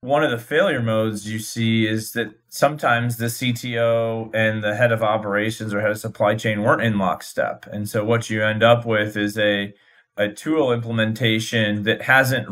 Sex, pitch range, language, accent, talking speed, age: male, 110-125 Hz, English, American, 185 wpm, 30-49